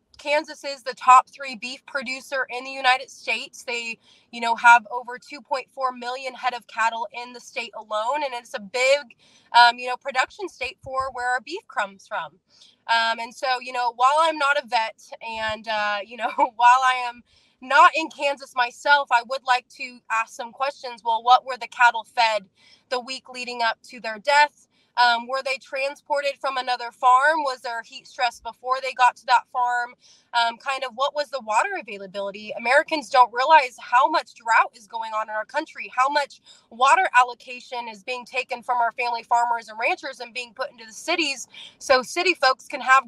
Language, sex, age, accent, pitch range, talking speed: English, female, 20-39, American, 235-275 Hz, 200 wpm